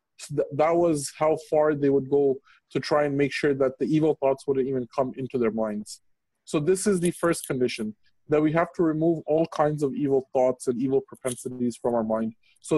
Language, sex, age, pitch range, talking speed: English, male, 20-39, 125-155 Hz, 215 wpm